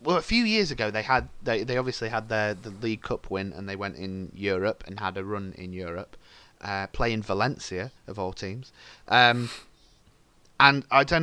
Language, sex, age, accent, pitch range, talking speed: English, male, 30-49, British, 95-125 Hz, 200 wpm